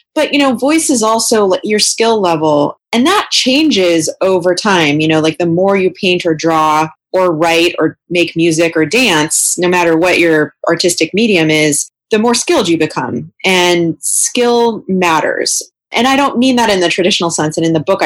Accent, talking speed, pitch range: American, 195 wpm, 155-205 Hz